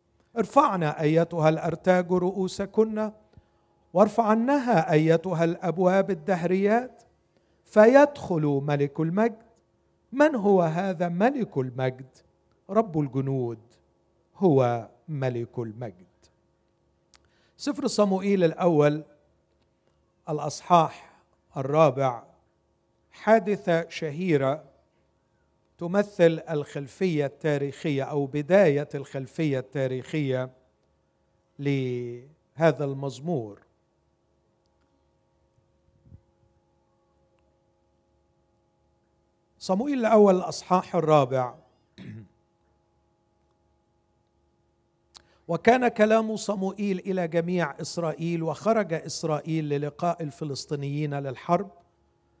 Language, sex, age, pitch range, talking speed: Arabic, male, 50-69, 125-185 Hz, 60 wpm